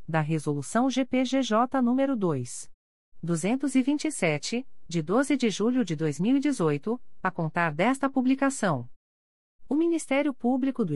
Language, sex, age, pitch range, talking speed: Portuguese, female, 40-59, 170-245 Hz, 110 wpm